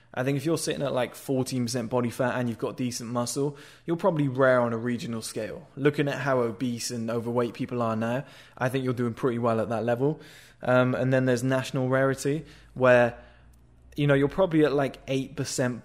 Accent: British